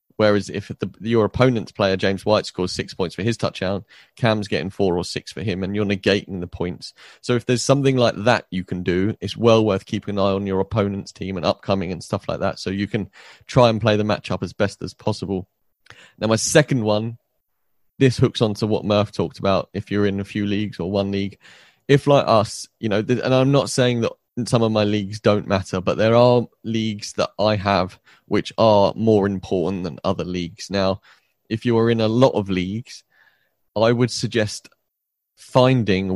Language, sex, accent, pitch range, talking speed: English, male, British, 100-115 Hz, 205 wpm